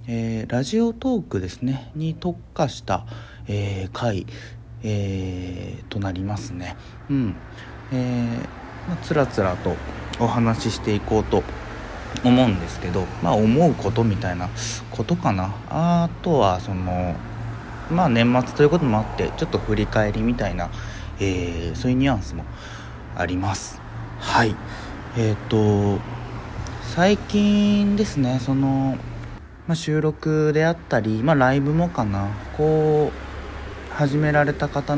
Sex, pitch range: male, 95-130 Hz